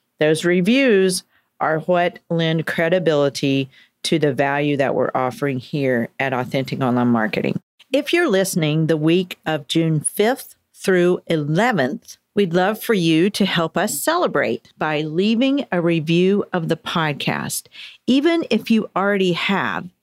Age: 50-69